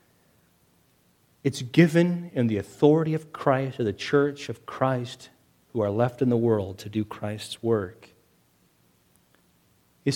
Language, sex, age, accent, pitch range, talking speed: English, male, 40-59, American, 145-215 Hz, 135 wpm